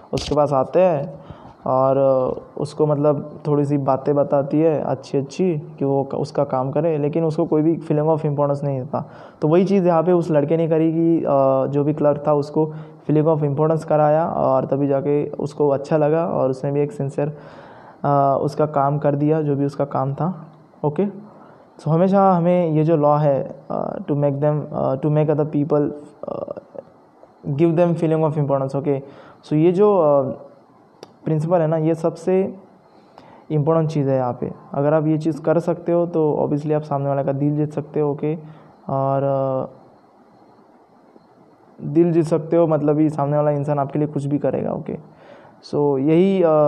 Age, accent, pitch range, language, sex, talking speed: 20-39, native, 145-160 Hz, Hindi, male, 185 wpm